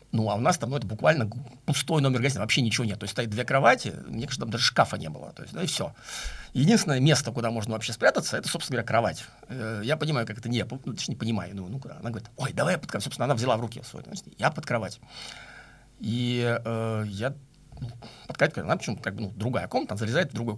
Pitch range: 110-145 Hz